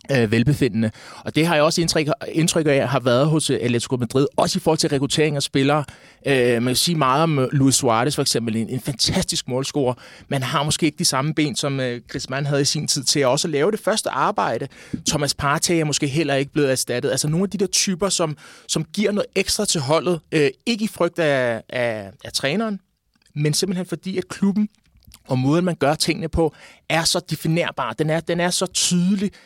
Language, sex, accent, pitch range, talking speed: Danish, male, native, 140-175 Hz, 220 wpm